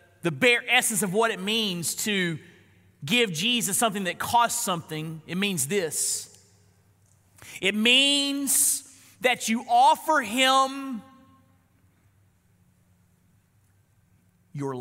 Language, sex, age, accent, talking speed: English, male, 40-59, American, 95 wpm